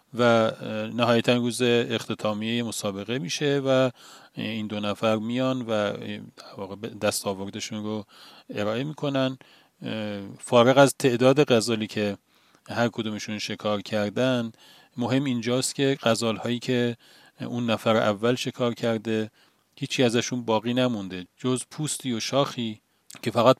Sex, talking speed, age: male, 115 wpm, 40-59